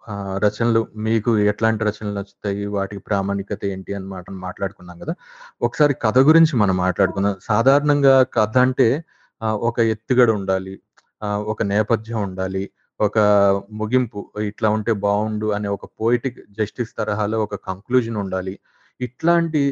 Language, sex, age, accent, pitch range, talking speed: Telugu, male, 30-49, native, 105-130 Hz, 130 wpm